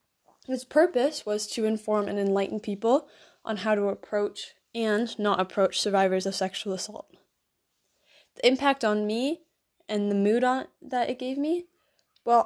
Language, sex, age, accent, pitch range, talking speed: English, female, 10-29, American, 200-245 Hz, 150 wpm